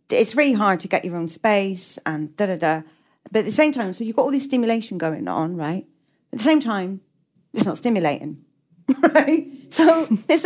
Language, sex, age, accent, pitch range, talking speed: English, female, 40-59, British, 185-265 Hz, 205 wpm